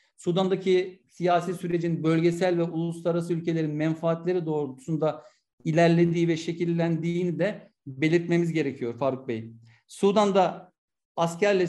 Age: 50-69